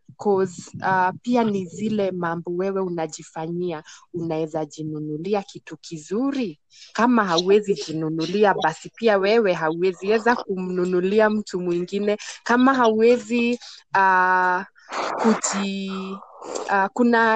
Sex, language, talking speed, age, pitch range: female, Swahili, 95 wpm, 20-39, 185-220 Hz